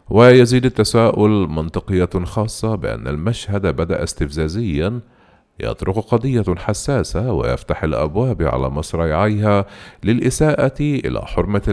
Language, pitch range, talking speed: Arabic, 75-105 Hz, 90 wpm